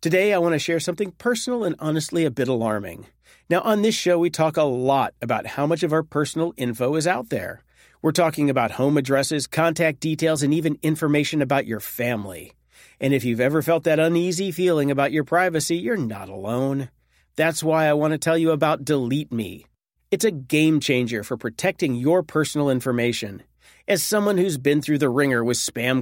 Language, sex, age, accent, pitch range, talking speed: English, male, 40-59, American, 130-170 Hz, 195 wpm